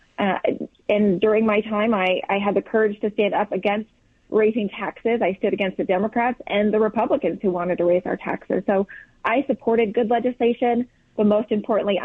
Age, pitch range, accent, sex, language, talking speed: 30-49, 195-225 Hz, American, female, English, 190 wpm